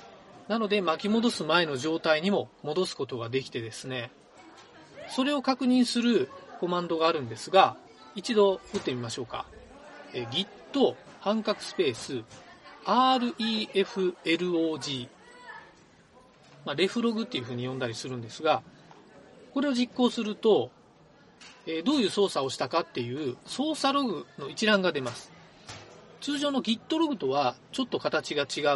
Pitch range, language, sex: 155-240 Hz, Japanese, male